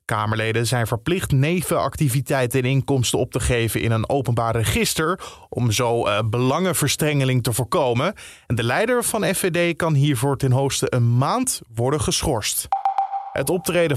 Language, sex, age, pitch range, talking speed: Dutch, male, 20-39, 120-160 Hz, 140 wpm